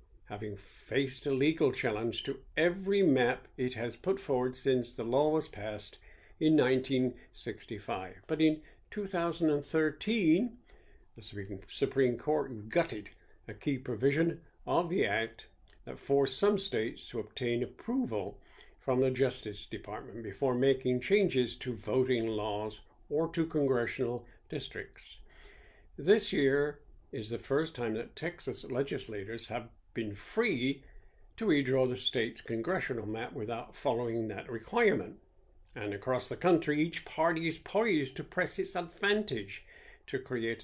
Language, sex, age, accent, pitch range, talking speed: English, male, 60-79, American, 115-155 Hz, 130 wpm